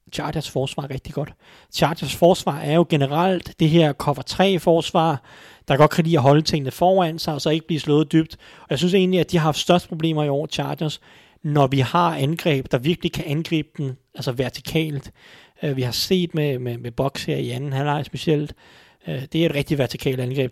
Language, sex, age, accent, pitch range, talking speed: Danish, male, 30-49, native, 135-160 Hz, 210 wpm